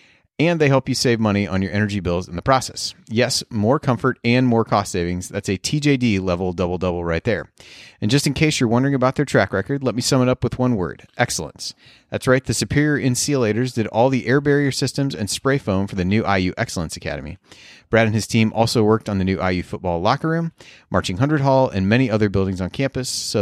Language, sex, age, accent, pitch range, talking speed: English, male, 30-49, American, 100-135 Hz, 230 wpm